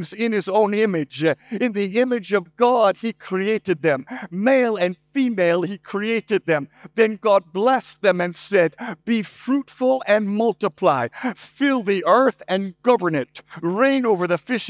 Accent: American